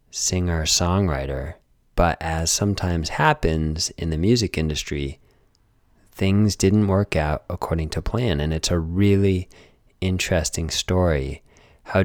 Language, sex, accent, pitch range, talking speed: English, male, American, 80-95 Hz, 120 wpm